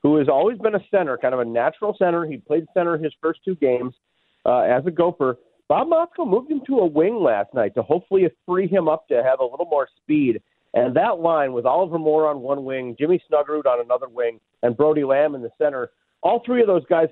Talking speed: 235 wpm